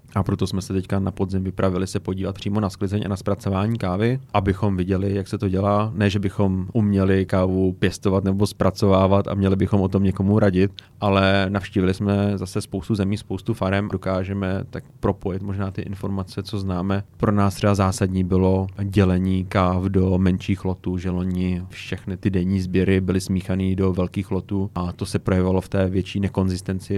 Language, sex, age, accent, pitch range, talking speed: Czech, male, 30-49, native, 95-105 Hz, 185 wpm